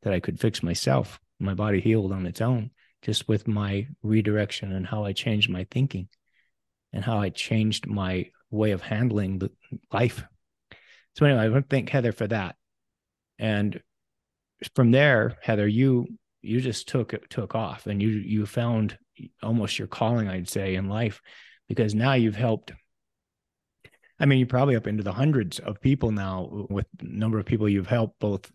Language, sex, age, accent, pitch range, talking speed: English, male, 30-49, American, 100-125 Hz, 180 wpm